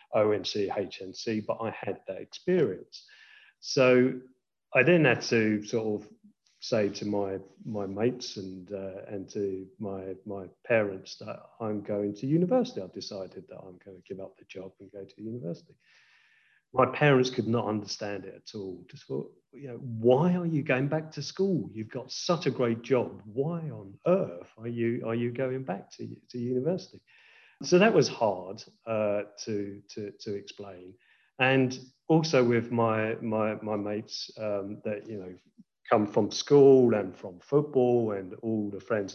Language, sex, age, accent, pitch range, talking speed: English, male, 40-59, British, 105-145 Hz, 175 wpm